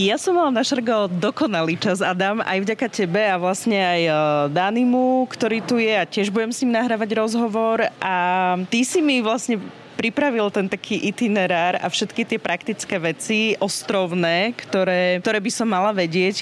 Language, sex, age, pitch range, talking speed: Slovak, female, 30-49, 180-220 Hz, 165 wpm